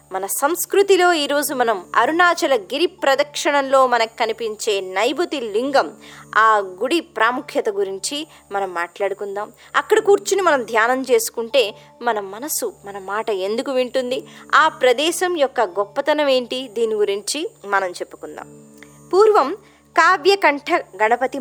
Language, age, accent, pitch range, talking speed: Telugu, 20-39, native, 215-335 Hz, 110 wpm